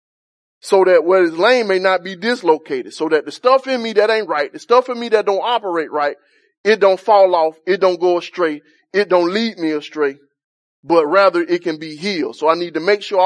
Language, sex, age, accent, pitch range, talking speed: English, male, 30-49, American, 175-245 Hz, 230 wpm